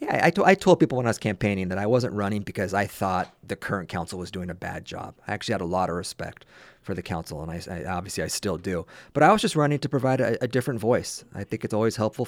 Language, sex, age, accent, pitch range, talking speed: English, male, 30-49, American, 95-110 Hz, 265 wpm